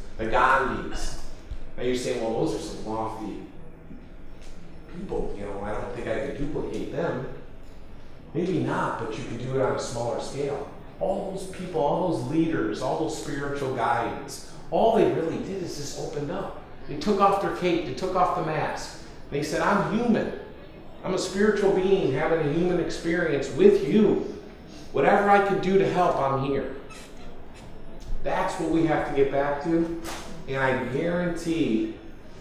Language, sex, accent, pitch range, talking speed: English, male, American, 130-175 Hz, 170 wpm